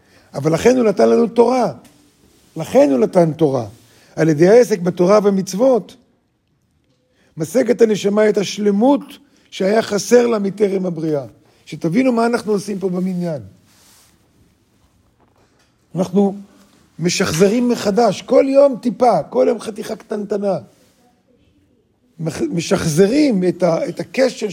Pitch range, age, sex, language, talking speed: 165-225 Hz, 50-69, male, Hebrew, 105 wpm